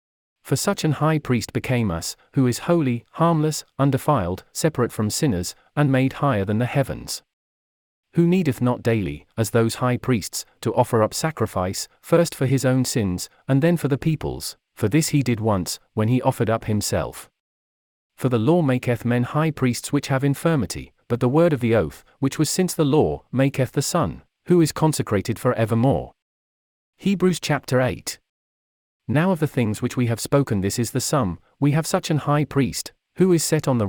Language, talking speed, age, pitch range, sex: English, 190 wpm, 40-59, 110-145 Hz, male